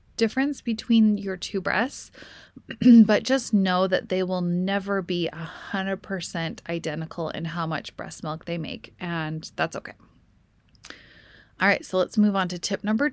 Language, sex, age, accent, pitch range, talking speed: English, female, 20-39, American, 175-220 Hz, 165 wpm